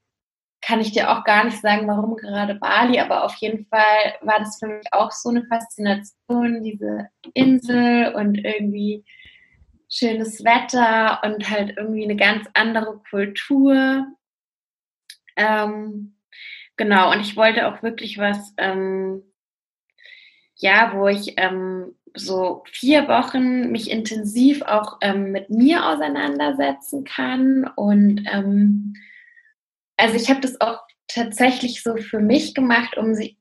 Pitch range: 205-245 Hz